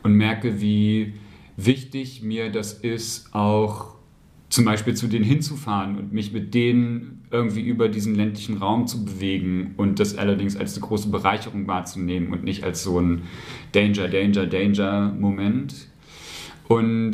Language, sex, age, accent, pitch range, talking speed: German, male, 40-59, German, 100-115 Hz, 135 wpm